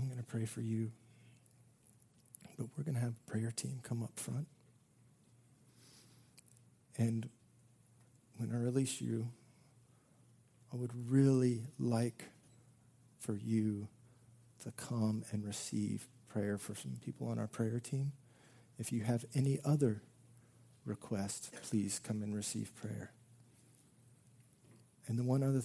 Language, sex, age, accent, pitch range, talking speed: English, male, 40-59, American, 110-125 Hz, 125 wpm